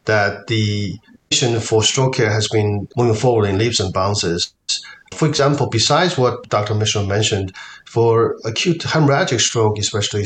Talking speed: 150 wpm